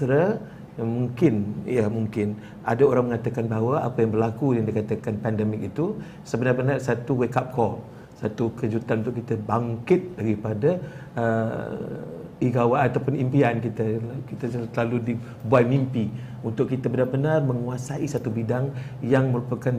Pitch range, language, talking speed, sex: 115-135 Hz, Malay, 125 wpm, male